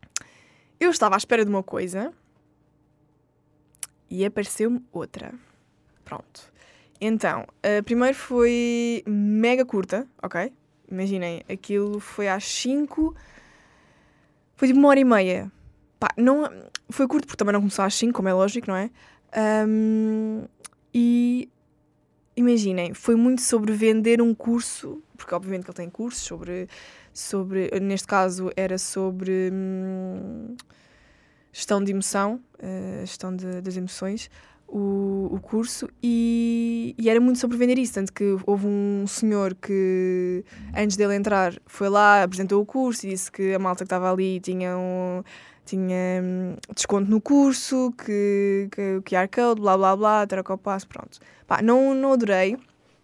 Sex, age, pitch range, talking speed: female, 20-39, 190-235 Hz, 135 wpm